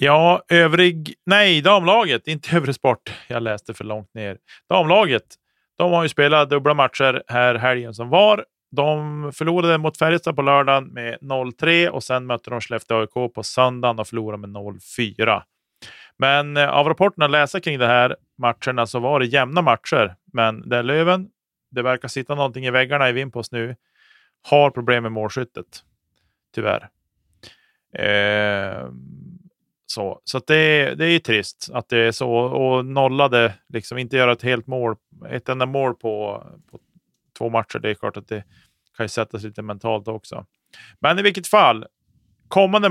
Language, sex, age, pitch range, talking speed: Swedish, male, 30-49, 115-150 Hz, 160 wpm